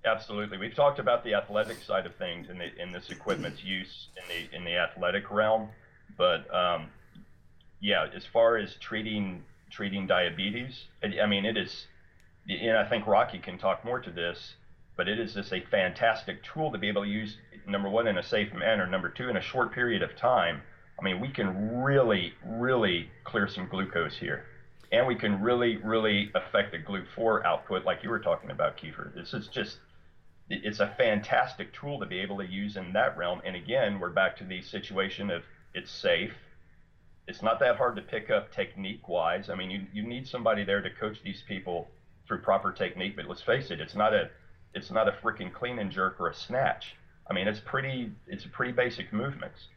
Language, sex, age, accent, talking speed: English, male, 40-59, American, 205 wpm